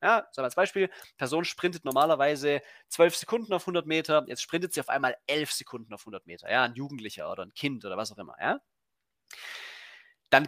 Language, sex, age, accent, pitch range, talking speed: German, male, 30-49, German, 145-215 Hz, 170 wpm